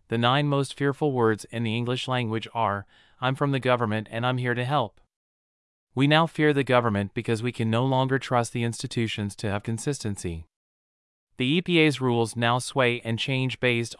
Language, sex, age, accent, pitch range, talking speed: English, male, 30-49, American, 110-130 Hz, 185 wpm